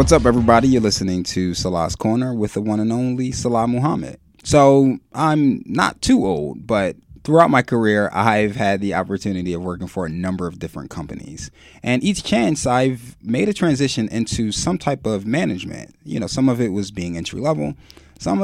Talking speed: 190 wpm